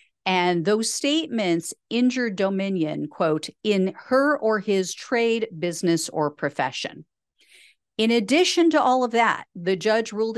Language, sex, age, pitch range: English, female, 40-59, 175-245 Hz